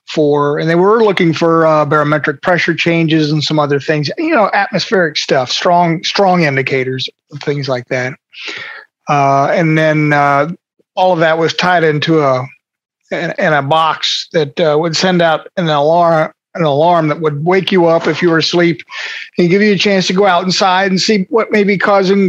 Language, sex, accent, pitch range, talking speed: English, male, American, 150-185 Hz, 195 wpm